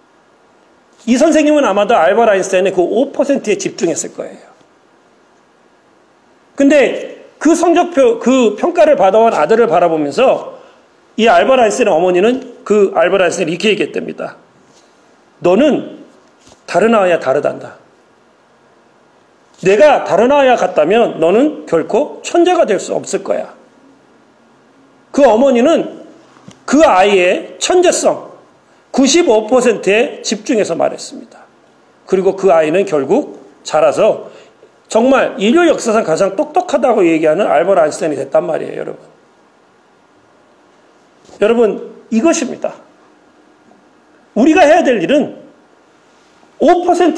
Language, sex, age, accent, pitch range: Korean, male, 40-59, native, 215-325 Hz